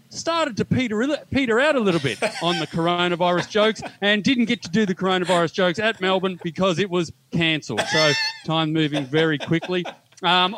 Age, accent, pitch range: 30-49, Australian, 155-195 Hz